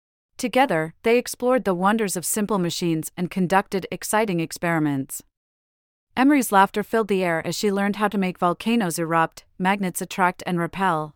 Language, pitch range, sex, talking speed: English, 170-210 Hz, female, 155 wpm